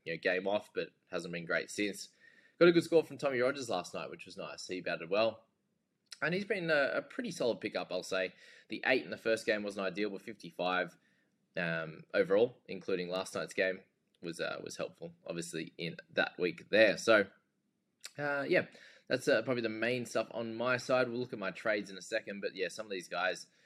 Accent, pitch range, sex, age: Australian, 90-125 Hz, male, 20-39